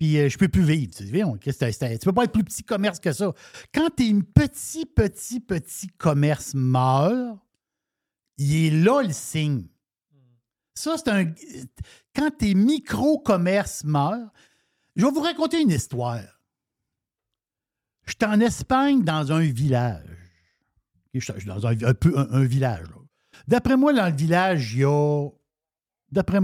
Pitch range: 120-185 Hz